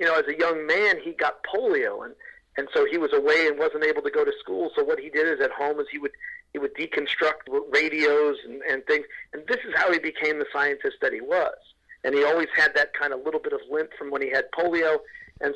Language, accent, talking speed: English, American, 260 wpm